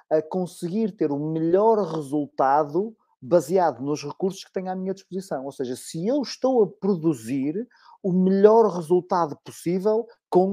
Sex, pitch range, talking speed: male, 145-200 Hz, 150 wpm